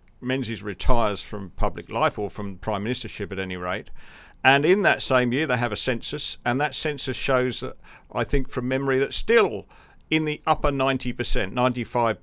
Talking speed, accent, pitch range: 180 wpm, British, 100-130 Hz